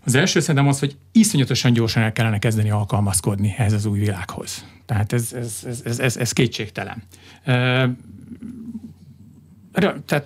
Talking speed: 140 wpm